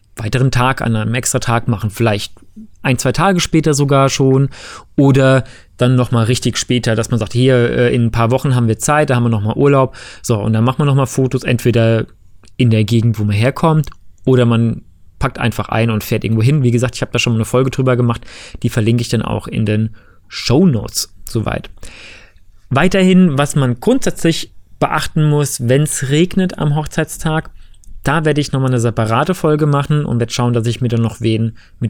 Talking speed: 210 wpm